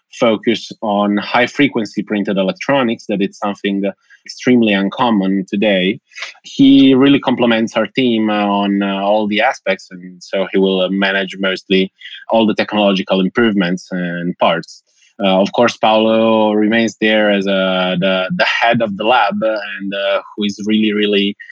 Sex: male